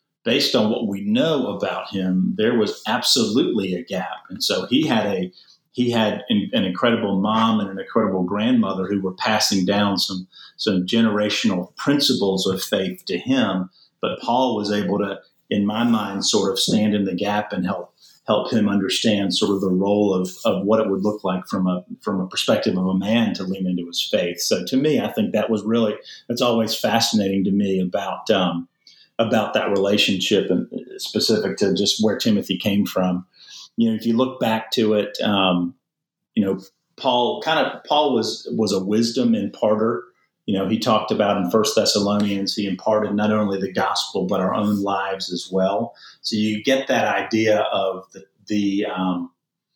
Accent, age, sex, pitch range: American, 40-59, male, 95-110 Hz